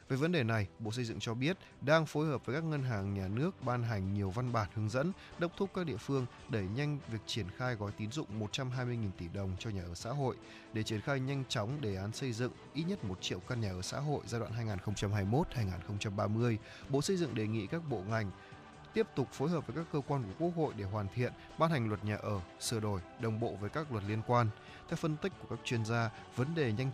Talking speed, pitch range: 250 wpm, 105-135 Hz